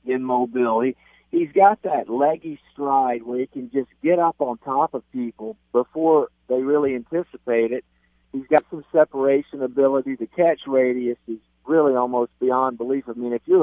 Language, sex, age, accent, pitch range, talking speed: English, male, 50-69, American, 120-155 Hz, 175 wpm